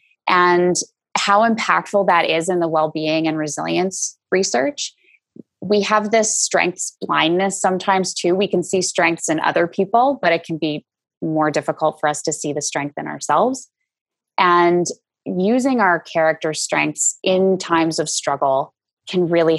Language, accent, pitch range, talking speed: English, American, 155-185 Hz, 155 wpm